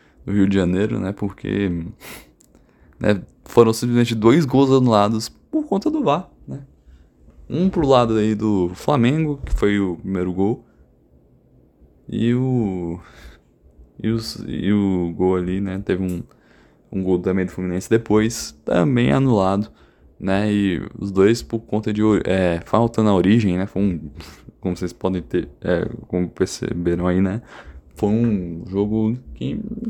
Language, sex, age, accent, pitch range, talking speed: Portuguese, male, 20-39, Brazilian, 90-115 Hz, 150 wpm